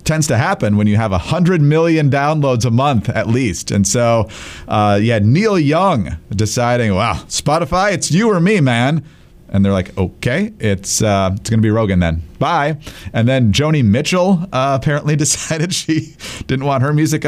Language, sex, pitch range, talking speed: English, male, 110-155 Hz, 190 wpm